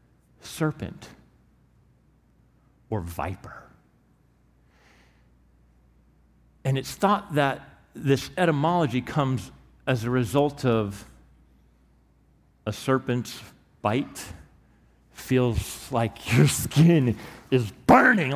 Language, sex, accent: English, male, American